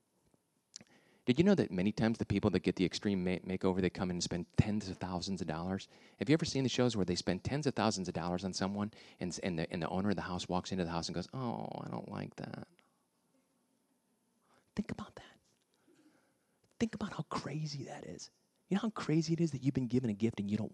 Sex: male